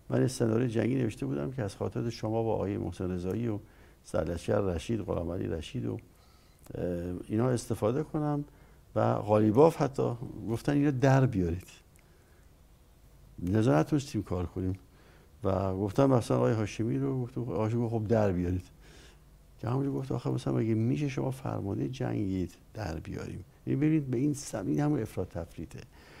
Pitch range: 90-120 Hz